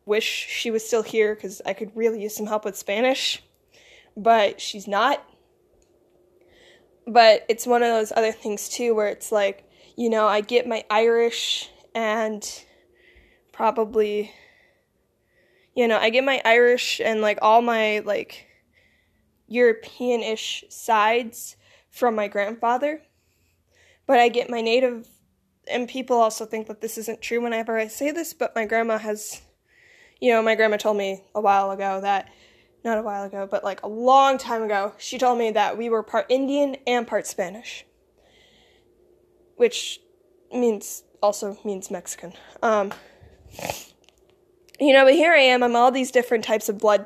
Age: 10-29